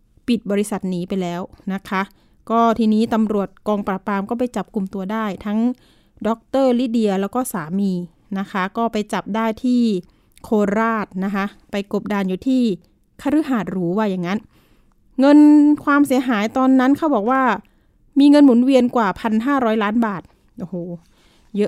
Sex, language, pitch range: female, Thai, 205-255 Hz